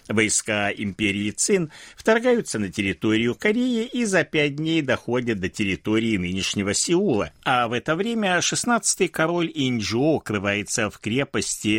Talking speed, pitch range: 130 wpm, 105-165 Hz